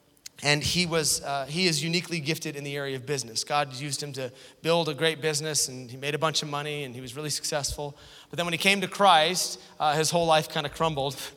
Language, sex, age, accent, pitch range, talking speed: English, male, 30-49, American, 145-180 Hz, 250 wpm